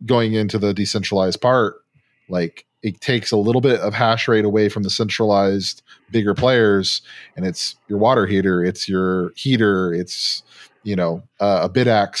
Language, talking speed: English, 165 wpm